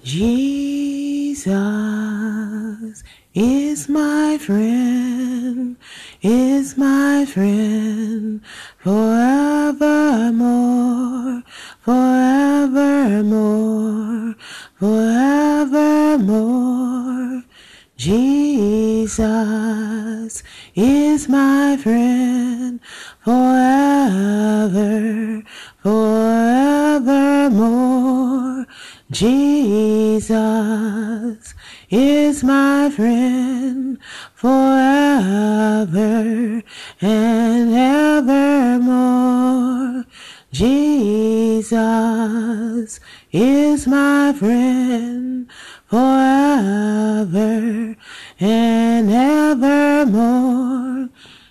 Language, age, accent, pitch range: English, 30-49, American, 220-270 Hz